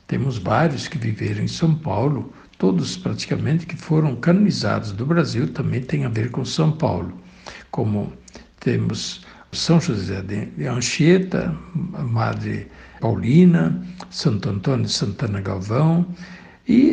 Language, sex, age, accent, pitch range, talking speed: Portuguese, male, 60-79, Brazilian, 115-170 Hz, 130 wpm